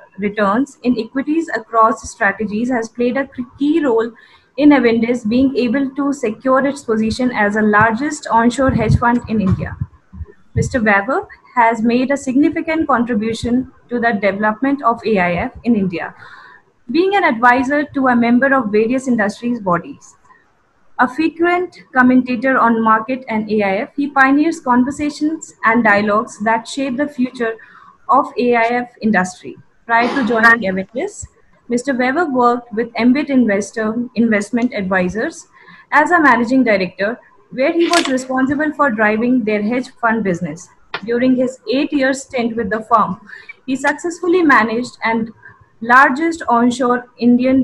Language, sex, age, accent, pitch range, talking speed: English, female, 20-39, Indian, 220-270 Hz, 135 wpm